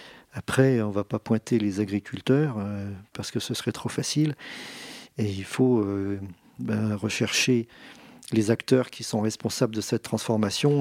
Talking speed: 145 wpm